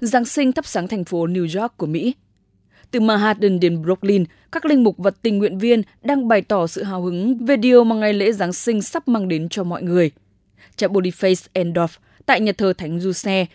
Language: English